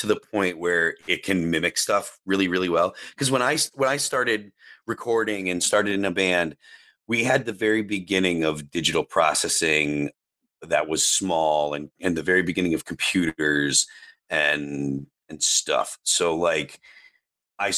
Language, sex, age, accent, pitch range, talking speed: English, male, 30-49, American, 90-120 Hz, 160 wpm